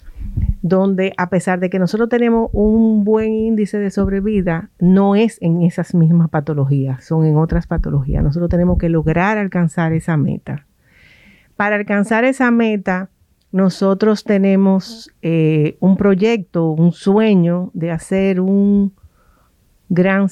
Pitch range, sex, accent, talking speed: 165-205 Hz, female, American, 130 wpm